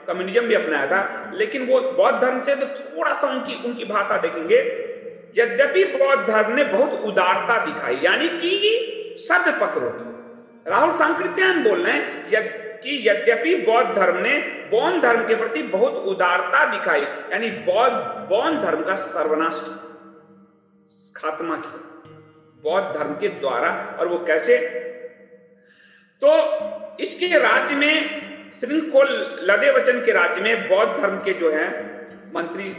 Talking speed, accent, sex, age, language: 100 wpm, native, male, 50-69, Hindi